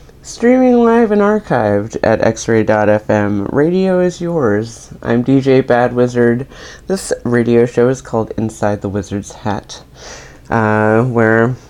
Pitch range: 110-135 Hz